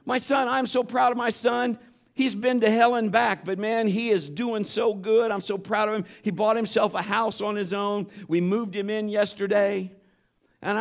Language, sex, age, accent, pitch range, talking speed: English, male, 50-69, American, 215-260 Hz, 220 wpm